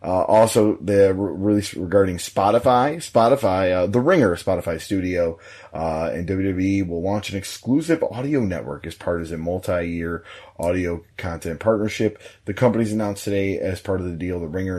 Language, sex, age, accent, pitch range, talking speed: English, male, 30-49, American, 85-105 Hz, 165 wpm